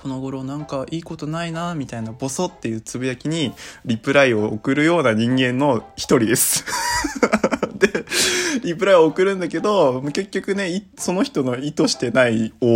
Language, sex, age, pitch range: Japanese, male, 20-39, 115-165 Hz